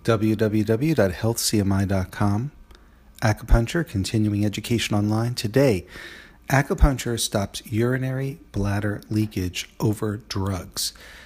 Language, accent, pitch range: English, American, 95-120 Hz